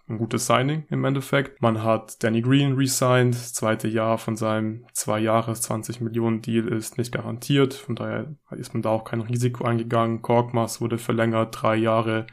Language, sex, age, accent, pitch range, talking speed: German, male, 20-39, German, 110-120 Hz, 180 wpm